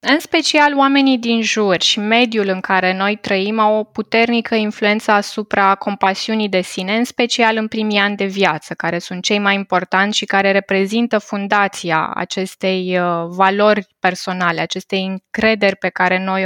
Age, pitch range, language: 20-39, 190-230 Hz, Romanian